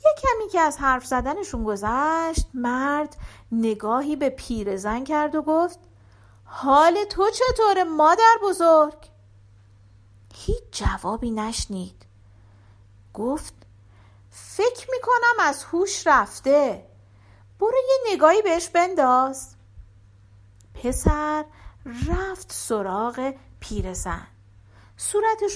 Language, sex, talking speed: Persian, female, 90 wpm